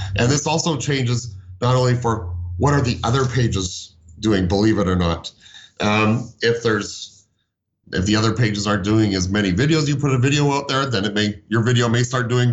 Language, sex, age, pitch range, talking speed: English, male, 40-59, 100-125 Hz, 205 wpm